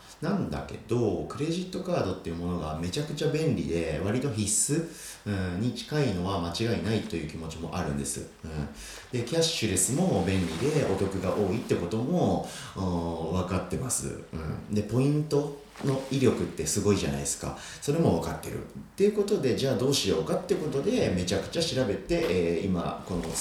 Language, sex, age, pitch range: Japanese, male, 40-59, 85-140 Hz